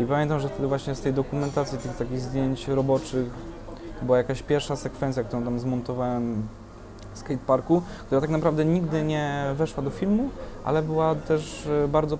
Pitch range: 125-155 Hz